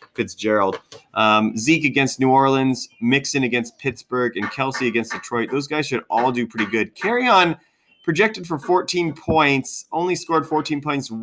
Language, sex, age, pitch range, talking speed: English, male, 30-49, 115-155 Hz, 160 wpm